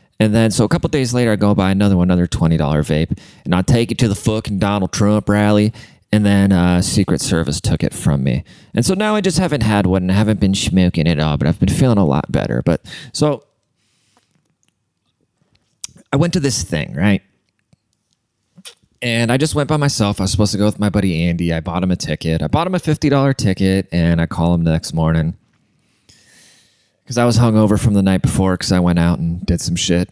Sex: male